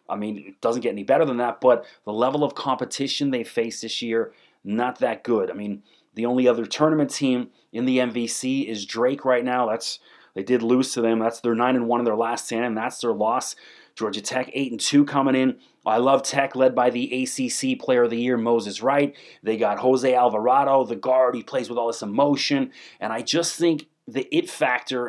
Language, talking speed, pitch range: English, 215 wpm, 120-145 Hz